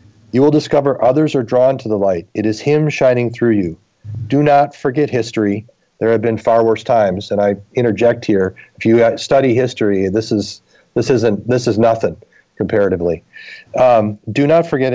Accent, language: American, English